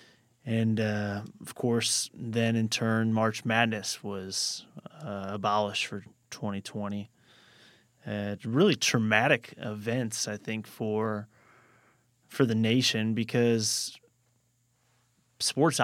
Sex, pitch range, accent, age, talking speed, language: male, 110-125 Hz, American, 20-39, 100 wpm, English